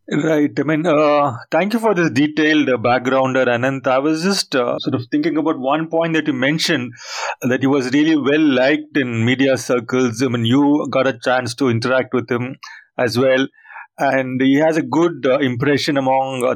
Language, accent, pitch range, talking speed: English, Indian, 130-150 Hz, 200 wpm